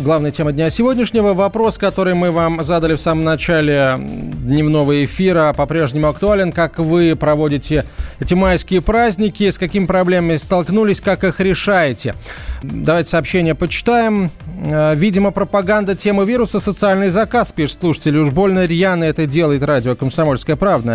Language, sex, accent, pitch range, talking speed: Russian, male, native, 145-185 Hz, 140 wpm